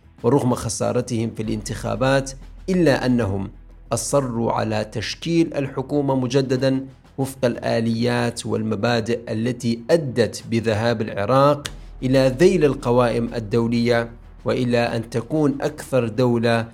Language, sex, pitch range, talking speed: Arabic, male, 110-125 Hz, 95 wpm